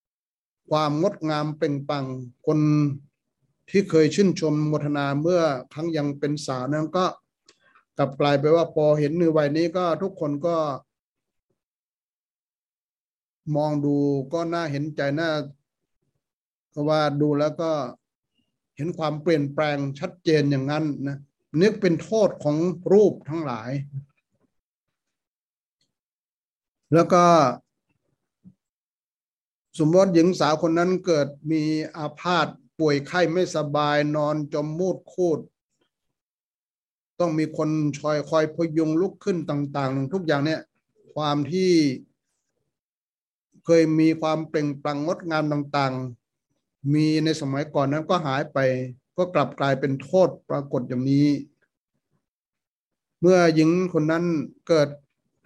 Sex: male